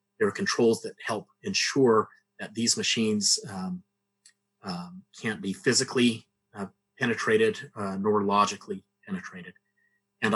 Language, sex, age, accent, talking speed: English, male, 30-49, American, 120 wpm